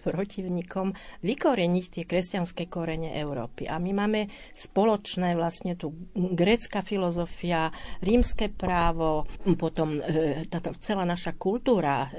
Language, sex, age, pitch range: Slovak, female, 50-69, 165-200 Hz